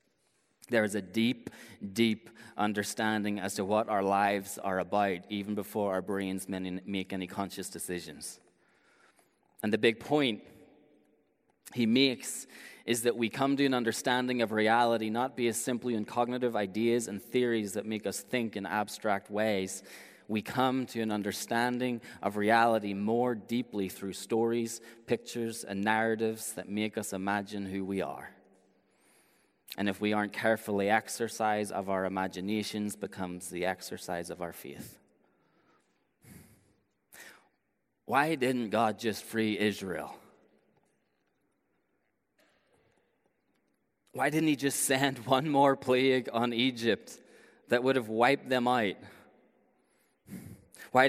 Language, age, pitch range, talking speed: English, 30-49, 100-125 Hz, 130 wpm